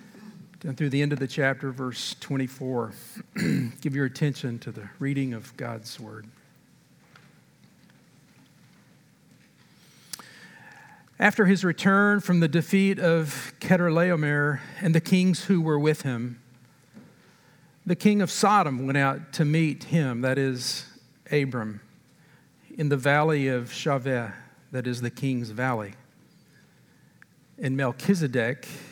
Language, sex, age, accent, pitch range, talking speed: English, male, 50-69, American, 130-170 Hz, 120 wpm